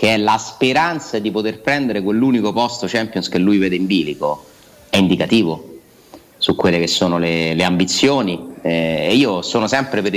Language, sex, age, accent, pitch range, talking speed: Italian, male, 30-49, native, 90-120 Hz, 175 wpm